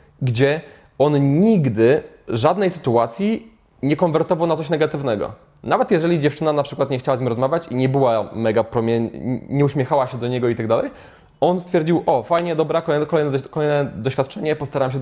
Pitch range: 130-155 Hz